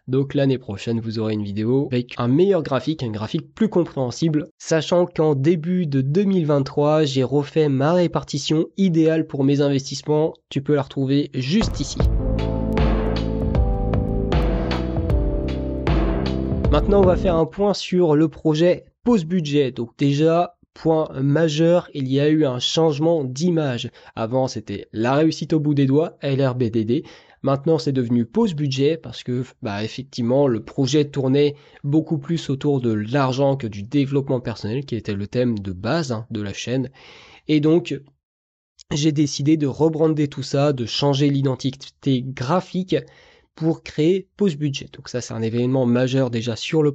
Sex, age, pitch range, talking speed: male, 20-39, 125-160 Hz, 150 wpm